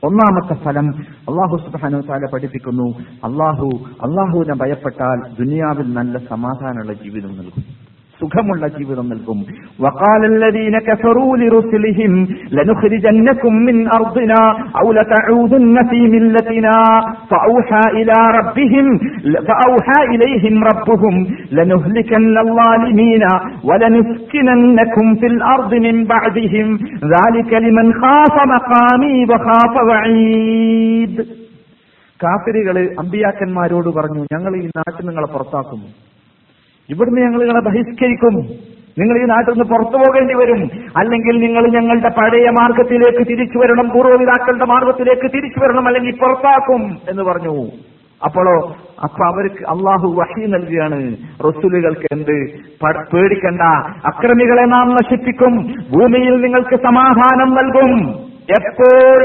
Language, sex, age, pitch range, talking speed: Malayalam, male, 50-69, 170-240 Hz, 95 wpm